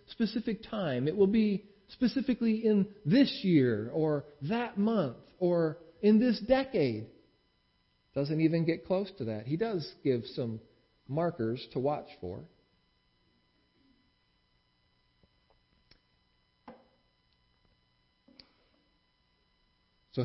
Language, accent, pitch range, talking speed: English, American, 120-200 Hz, 90 wpm